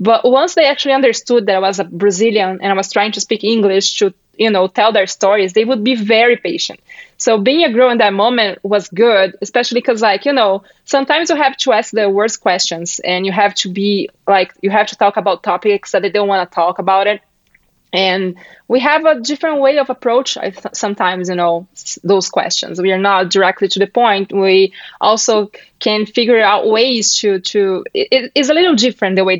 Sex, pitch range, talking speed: female, 190-225 Hz, 210 wpm